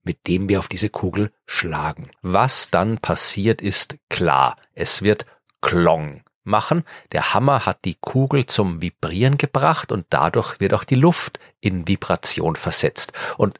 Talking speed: 150 wpm